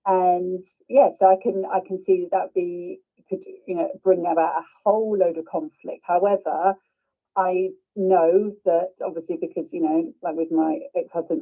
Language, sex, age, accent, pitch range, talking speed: English, female, 40-59, British, 175-275 Hz, 170 wpm